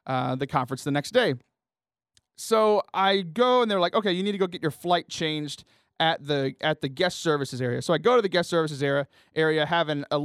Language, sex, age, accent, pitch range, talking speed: English, male, 30-49, American, 145-195 Hz, 230 wpm